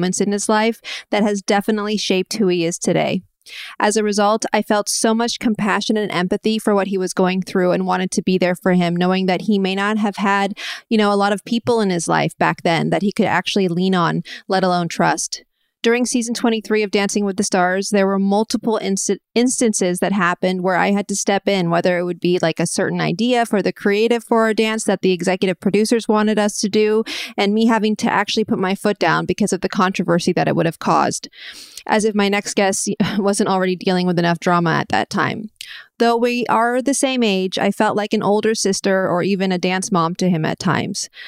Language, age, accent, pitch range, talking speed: English, 30-49, American, 190-225 Hz, 230 wpm